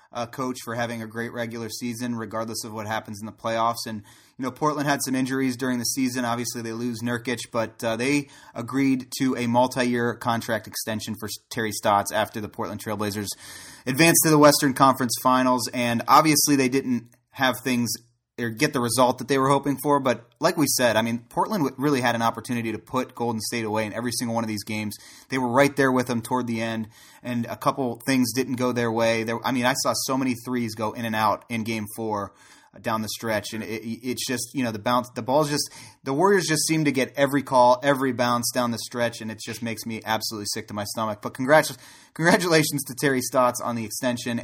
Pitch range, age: 110-130 Hz, 30-49